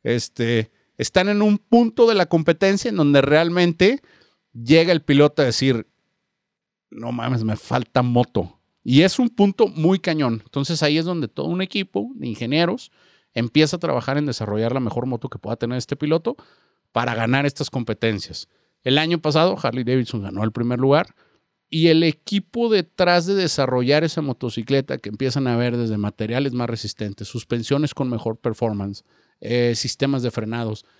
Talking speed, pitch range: 165 wpm, 120-160 Hz